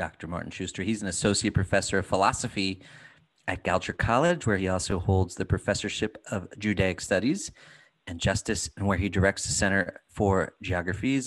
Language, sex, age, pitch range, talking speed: English, male, 30-49, 95-110 Hz, 165 wpm